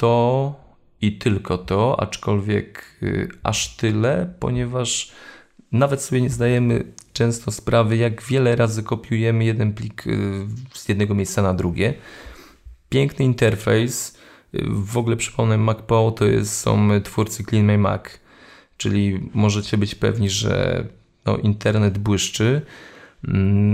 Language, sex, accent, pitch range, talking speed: Polish, male, native, 100-120 Hz, 115 wpm